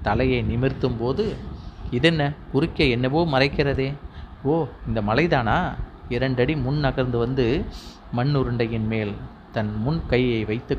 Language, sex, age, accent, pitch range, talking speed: Tamil, male, 30-49, native, 115-145 Hz, 110 wpm